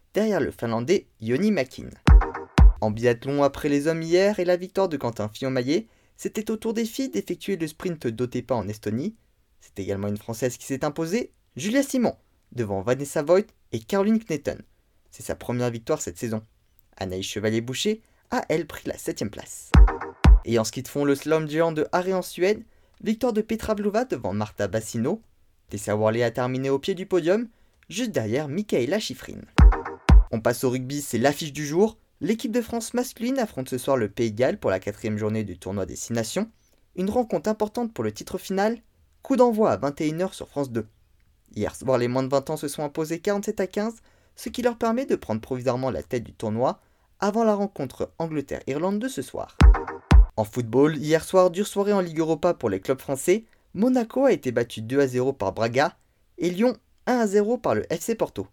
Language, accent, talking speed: French, French, 195 wpm